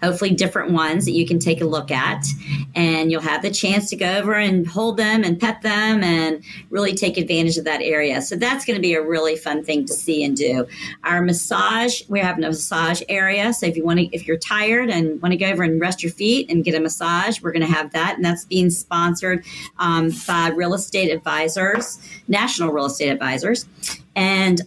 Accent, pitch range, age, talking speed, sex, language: American, 165-205 Hz, 40-59, 220 wpm, female, English